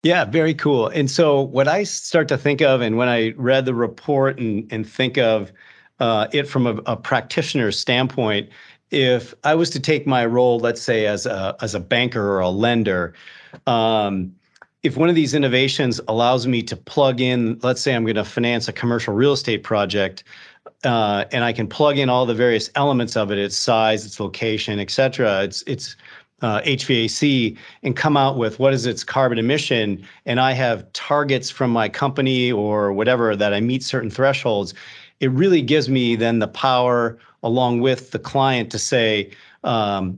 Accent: American